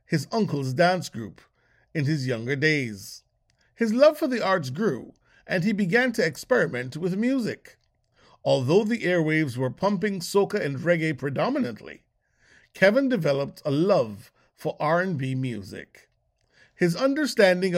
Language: English